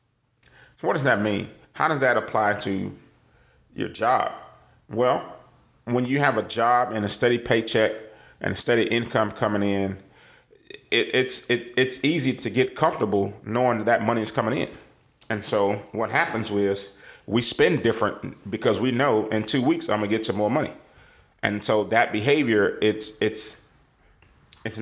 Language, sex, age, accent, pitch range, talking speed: English, male, 30-49, American, 105-125 Hz, 160 wpm